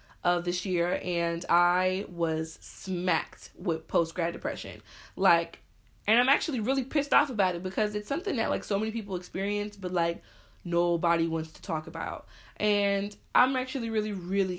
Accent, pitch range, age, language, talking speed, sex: American, 170-225 Hz, 20-39, English, 165 wpm, female